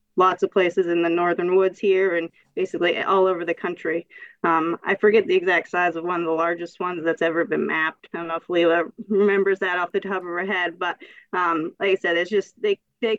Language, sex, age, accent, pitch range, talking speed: English, female, 20-39, American, 175-230 Hz, 235 wpm